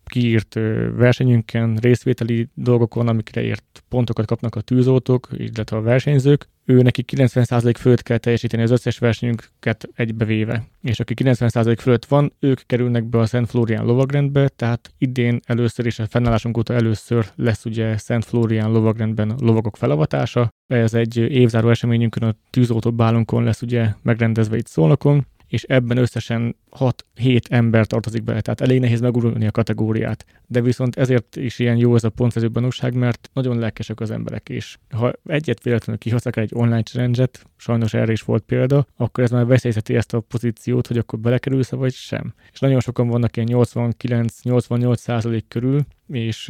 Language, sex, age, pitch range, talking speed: Hungarian, male, 20-39, 115-125 Hz, 160 wpm